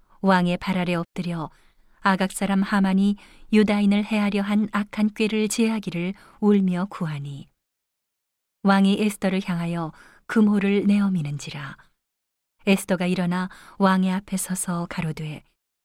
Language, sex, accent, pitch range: Korean, female, native, 180-210 Hz